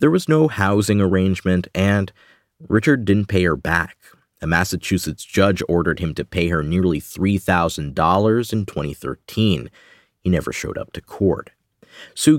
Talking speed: 145 wpm